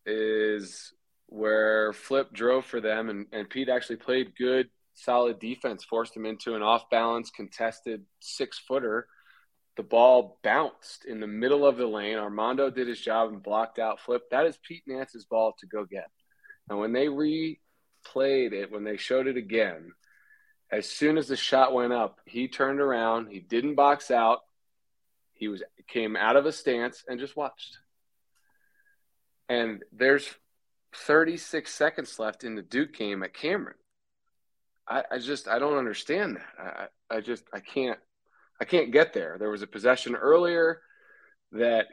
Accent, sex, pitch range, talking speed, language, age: American, male, 110-140 Hz, 160 wpm, English, 20-39